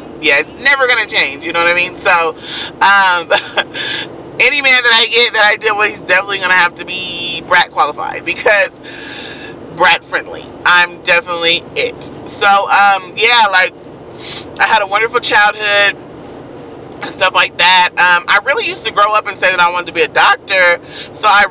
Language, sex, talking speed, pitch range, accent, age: English, male, 180 wpm, 175-215 Hz, American, 30-49